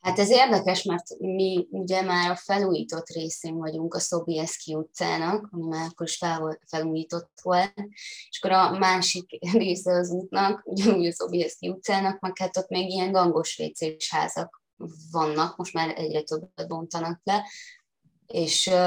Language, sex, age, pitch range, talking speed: Hungarian, female, 20-39, 160-185 Hz, 150 wpm